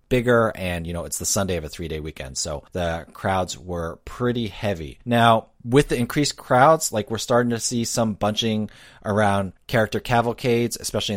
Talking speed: 175 wpm